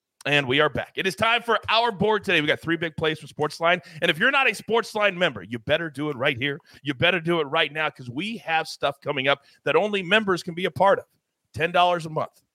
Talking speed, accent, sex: 260 wpm, American, male